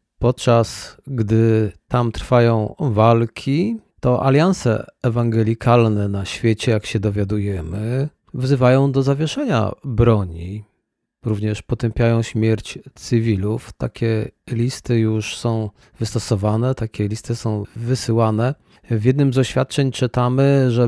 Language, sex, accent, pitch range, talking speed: Polish, male, native, 115-130 Hz, 105 wpm